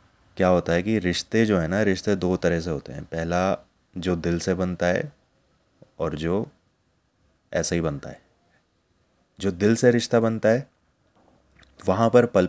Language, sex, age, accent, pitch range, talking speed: Hindi, male, 30-49, native, 85-115 Hz, 170 wpm